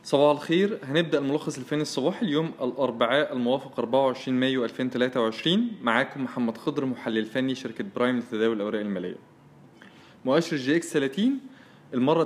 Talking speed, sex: 130 wpm, male